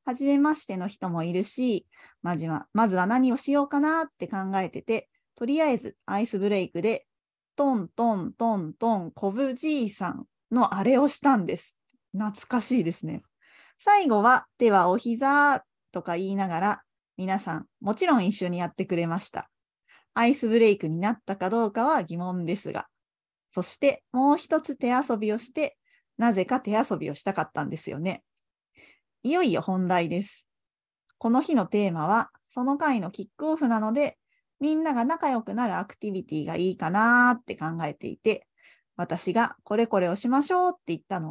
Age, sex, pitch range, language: 20-39, female, 185-275 Hz, Japanese